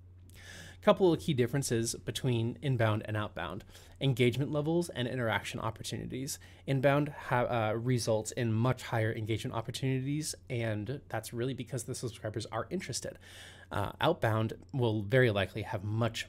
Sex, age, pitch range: male, 20-39, 100-130 Hz